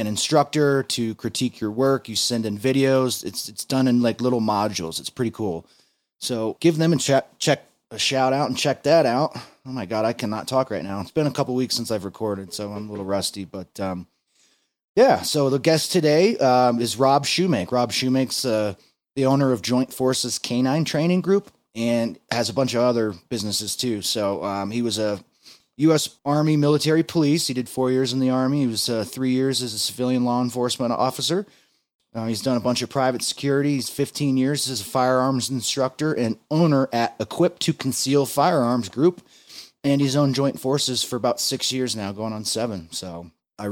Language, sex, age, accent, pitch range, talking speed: English, male, 30-49, American, 110-135 Hz, 205 wpm